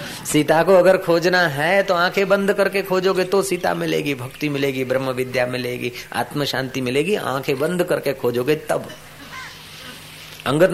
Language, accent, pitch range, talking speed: Hindi, native, 140-190 Hz, 150 wpm